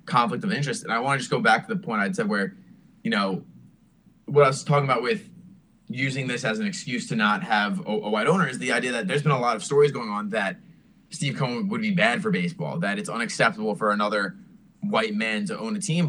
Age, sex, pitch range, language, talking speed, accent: 20-39, male, 135-205 Hz, English, 250 wpm, American